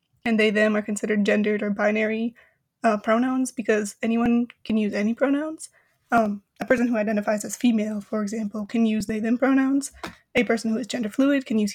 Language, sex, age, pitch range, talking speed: English, female, 20-39, 215-260 Hz, 195 wpm